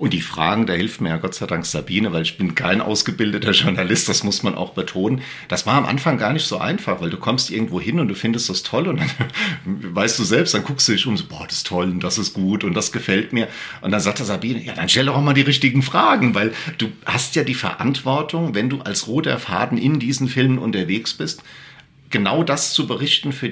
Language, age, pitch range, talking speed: German, 50-69, 105-145 Hz, 250 wpm